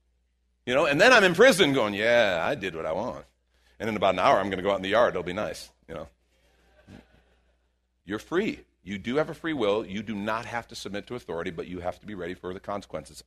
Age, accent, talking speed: 50-69, American, 260 wpm